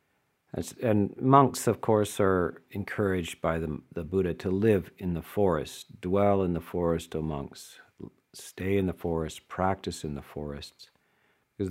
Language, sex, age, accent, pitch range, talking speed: English, male, 50-69, American, 85-100 Hz, 160 wpm